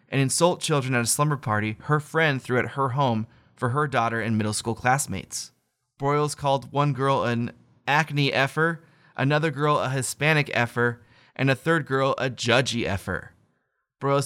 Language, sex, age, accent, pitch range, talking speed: English, male, 30-49, American, 120-145 Hz, 170 wpm